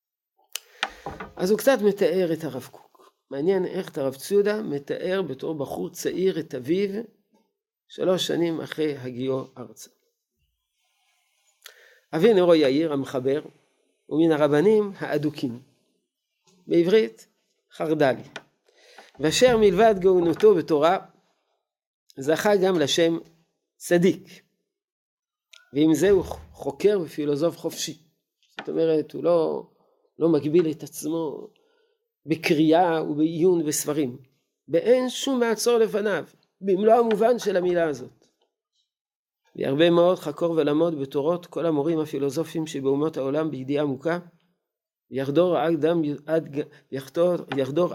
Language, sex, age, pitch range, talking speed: Hebrew, male, 50-69, 150-205 Hz, 100 wpm